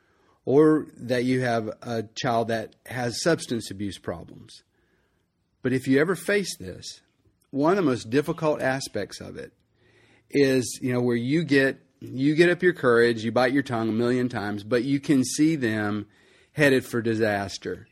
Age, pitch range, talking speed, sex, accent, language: 30-49, 110-130 Hz, 170 wpm, male, American, English